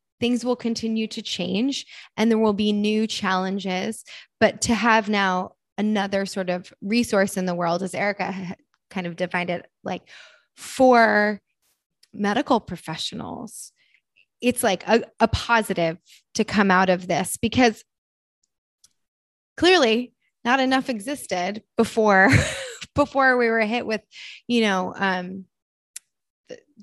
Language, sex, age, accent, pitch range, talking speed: English, female, 20-39, American, 190-240 Hz, 125 wpm